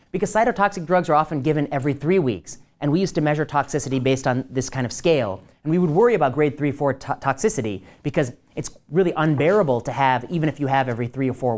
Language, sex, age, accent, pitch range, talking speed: English, male, 30-49, American, 125-165 Hz, 235 wpm